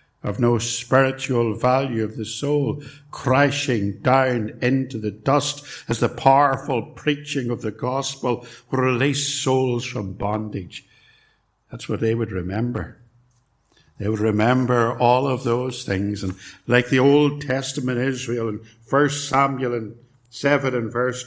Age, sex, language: 60-79, male, English